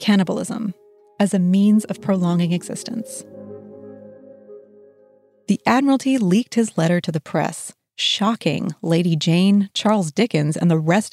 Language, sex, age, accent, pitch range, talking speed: English, female, 30-49, American, 155-205 Hz, 125 wpm